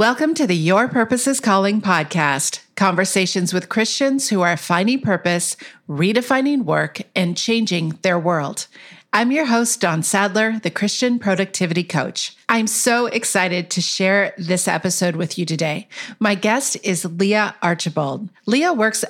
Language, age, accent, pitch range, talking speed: English, 40-59, American, 175-225 Hz, 150 wpm